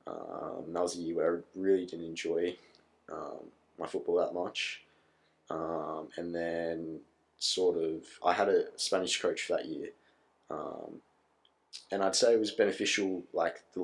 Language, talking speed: English, 160 wpm